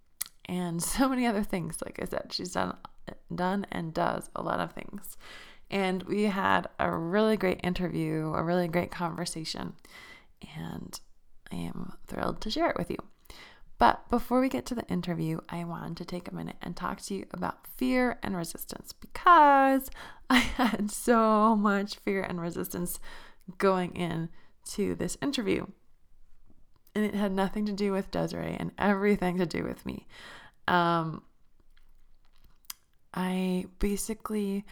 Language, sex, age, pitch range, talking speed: English, female, 20-39, 165-205 Hz, 150 wpm